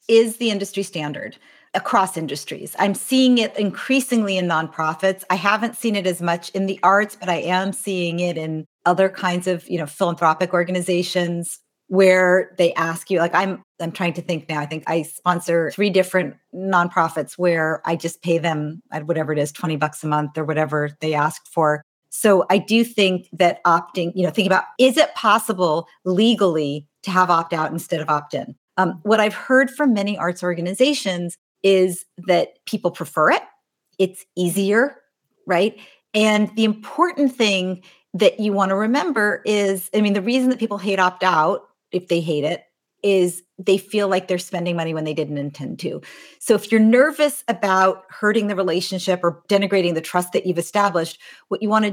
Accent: American